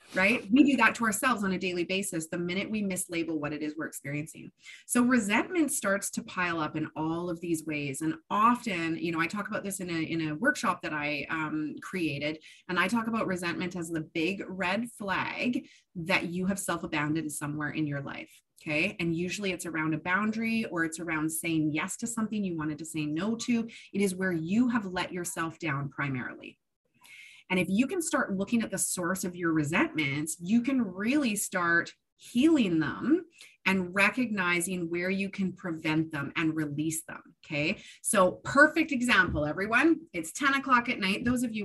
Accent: American